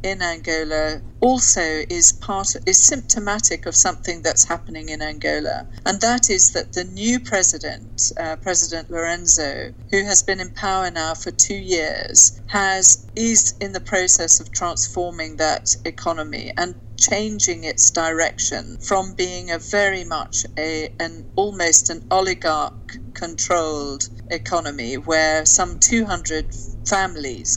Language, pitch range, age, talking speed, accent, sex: Portuguese, 145-190 Hz, 40-59, 135 wpm, British, female